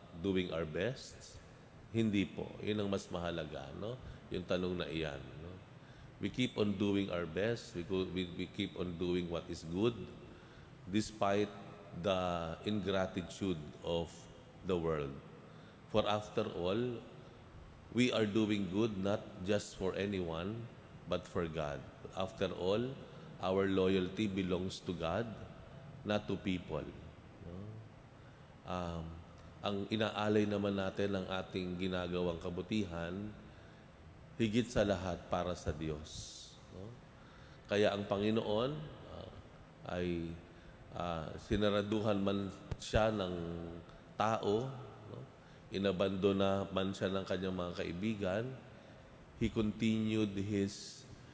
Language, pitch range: Filipino, 85-105 Hz